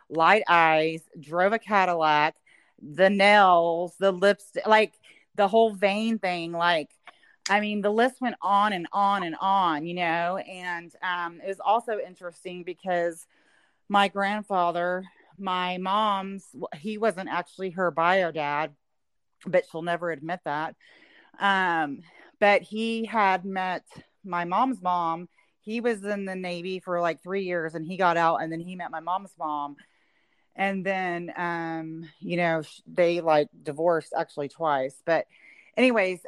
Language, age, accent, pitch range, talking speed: English, 30-49, American, 160-195 Hz, 145 wpm